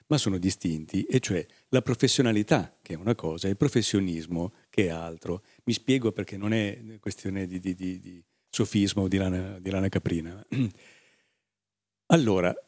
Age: 50-69